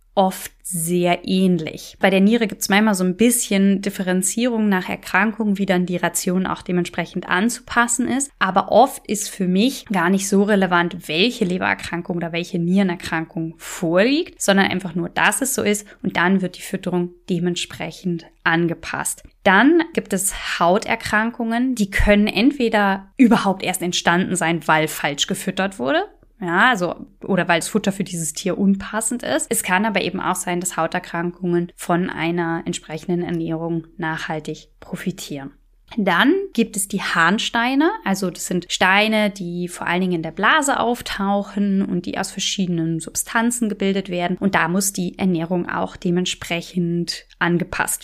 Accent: German